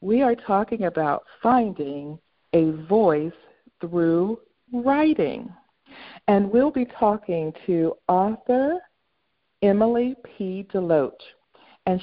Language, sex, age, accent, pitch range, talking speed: English, female, 50-69, American, 155-220 Hz, 95 wpm